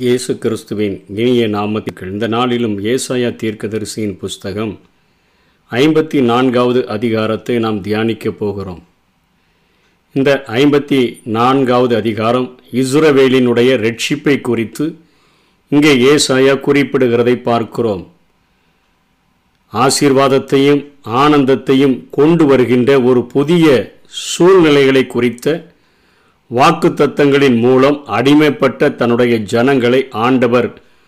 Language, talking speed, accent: Tamil, 75 wpm, native